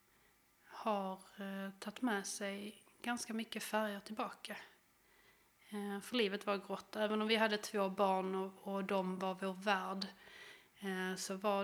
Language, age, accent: Swedish, 30-49, native